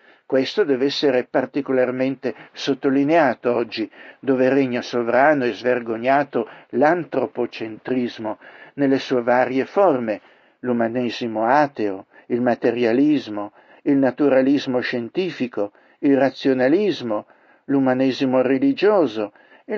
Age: 60-79